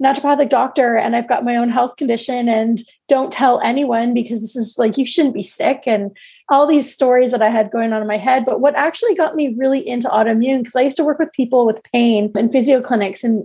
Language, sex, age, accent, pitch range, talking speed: English, female, 30-49, American, 220-280 Hz, 240 wpm